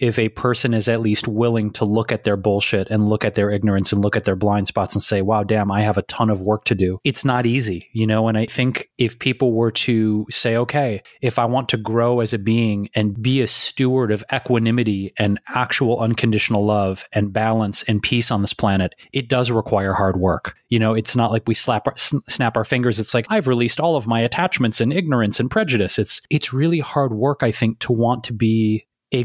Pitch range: 110-125 Hz